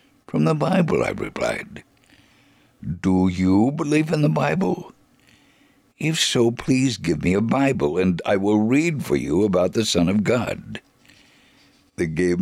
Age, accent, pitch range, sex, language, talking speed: 60-79, American, 90-130 Hz, male, English, 150 wpm